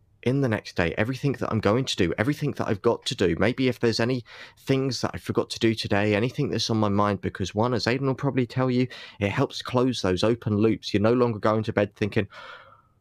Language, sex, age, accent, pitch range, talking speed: English, male, 20-39, British, 105-135 Hz, 245 wpm